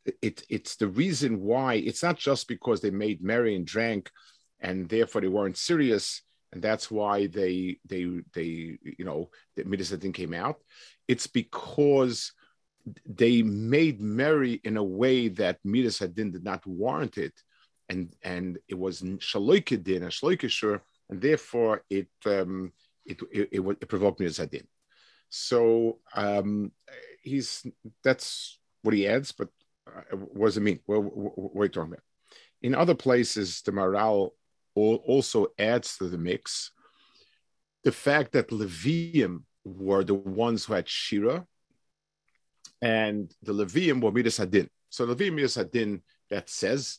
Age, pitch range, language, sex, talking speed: 50-69, 95-120 Hz, English, male, 140 wpm